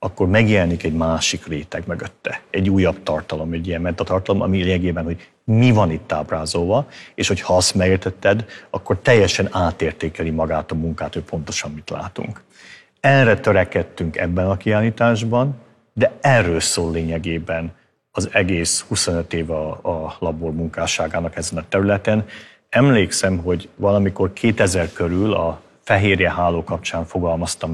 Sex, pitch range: male, 85-100 Hz